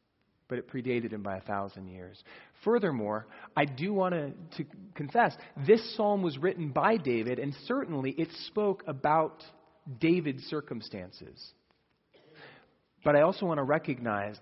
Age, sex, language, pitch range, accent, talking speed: 40-59, male, English, 125-170 Hz, American, 140 wpm